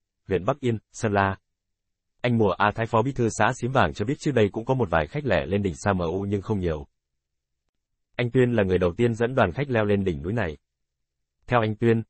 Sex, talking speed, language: male, 240 wpm, Vietnamese